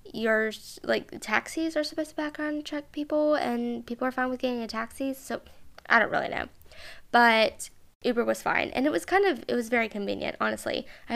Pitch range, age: 220-280 Hz, 10-29